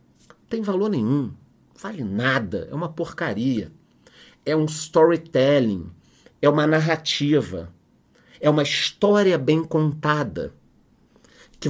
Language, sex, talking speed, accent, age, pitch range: Portuguese, male, 105 wpm, Brazilian, 40-59, 120-170 Hz